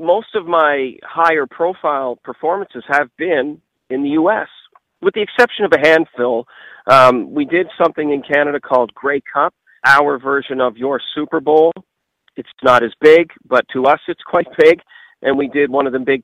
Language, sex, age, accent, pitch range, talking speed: English, male, 40-59, American, 125-160 Hz, 185 wpm